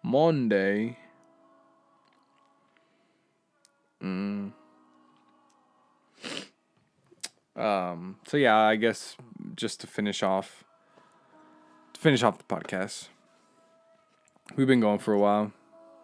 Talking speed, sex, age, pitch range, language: 80 wpm, male, 20-39, 110-180 Hz, English